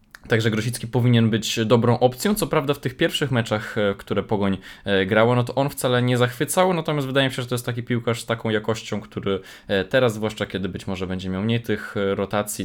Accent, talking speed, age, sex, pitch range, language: native, 210 wpm, 20-39, male, 100-125 Hz, Polish